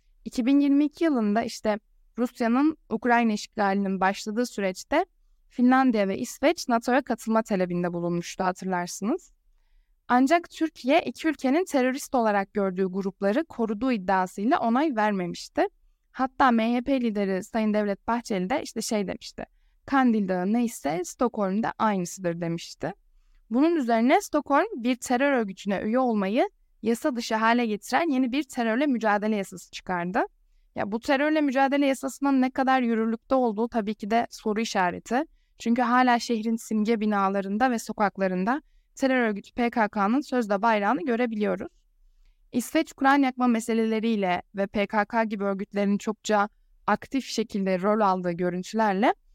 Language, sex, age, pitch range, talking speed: Turkish, female, 10-29, 205-260 Hz, 125 wpm